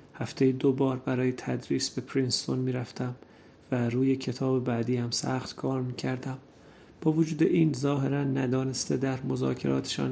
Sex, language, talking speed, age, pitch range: male, Persian, 135 wpm, 30-49, 125-135 Hz